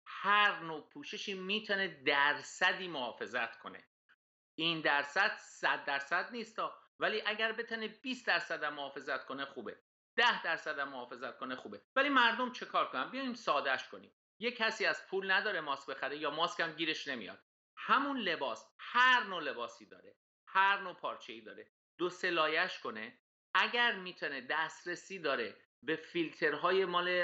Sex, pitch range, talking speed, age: male, 145-215 Hz, 145 wpm, 50-69